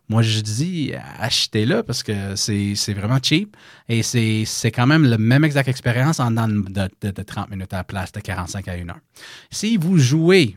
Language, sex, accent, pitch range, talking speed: English, male, Canadian, 110-145 Hz, 210 wpm